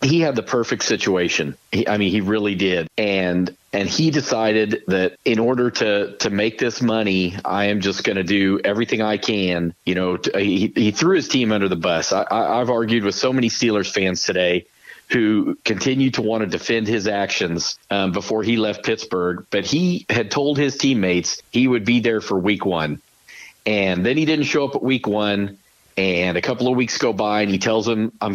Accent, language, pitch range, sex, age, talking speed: American, English, 100-125 Hz, male, 40-59, 210 wpm